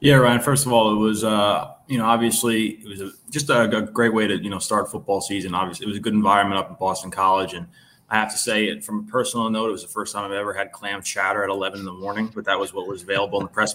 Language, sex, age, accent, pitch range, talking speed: English, male, 20-39, American, 100-125 Hz, 300 wpm